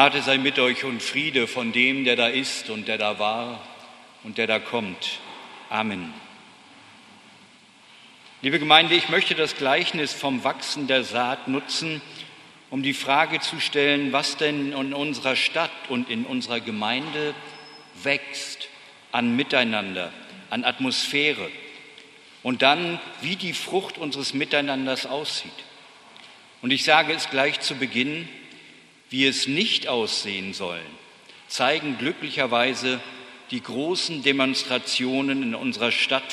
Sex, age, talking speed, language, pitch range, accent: male, 50-69, 130 wpm, German, 125-150 Hz, German